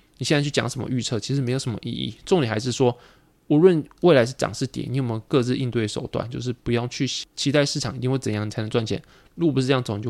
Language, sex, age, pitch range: Chinese, male, 20-39, 115-140 Hz